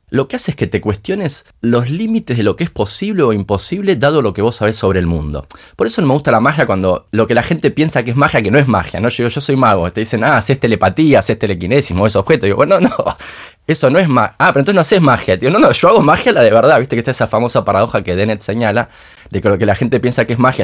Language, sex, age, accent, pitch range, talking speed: Spanish, male, 20-39, Argentinian, 95-135 Hz, 300 wpm